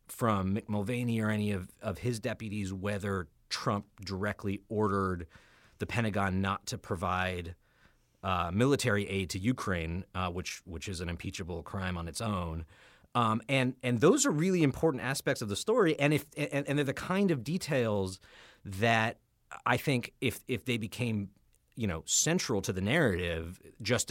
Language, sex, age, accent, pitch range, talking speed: English, male, 30-49, American, 95-120 Hz, 165 wpm